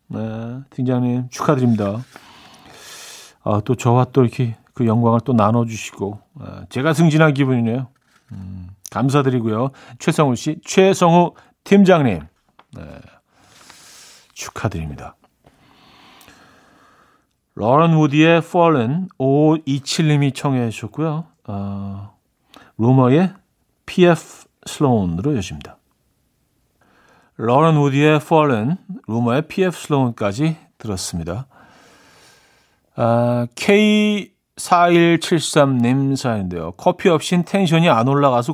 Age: 40-59